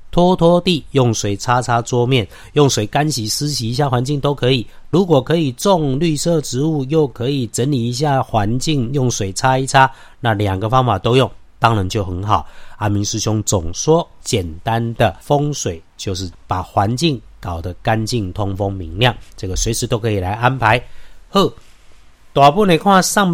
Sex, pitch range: male, 100-140 Hz